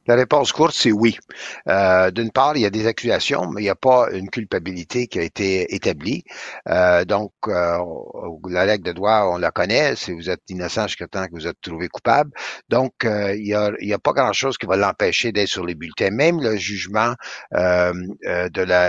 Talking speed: 210 wpm